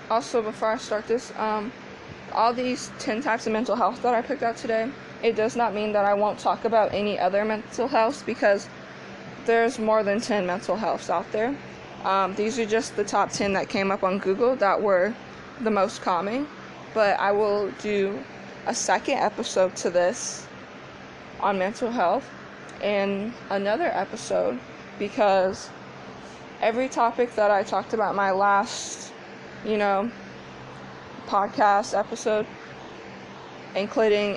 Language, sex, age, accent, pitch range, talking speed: English, female, 20-39, American, 180-215 Hz, 150 wpm